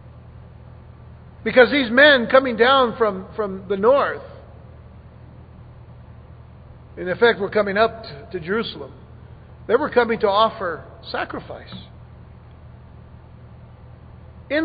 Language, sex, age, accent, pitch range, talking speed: English, male, 50-69, American, 220-265 Hz, 100 wpm